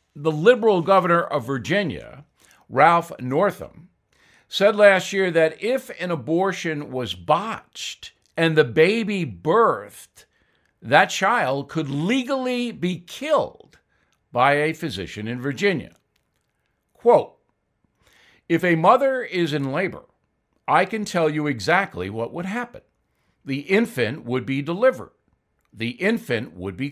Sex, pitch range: male, 135-190 Hz